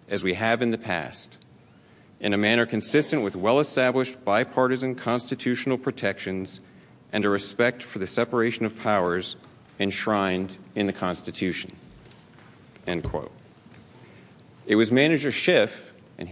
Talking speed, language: 125 wpm, English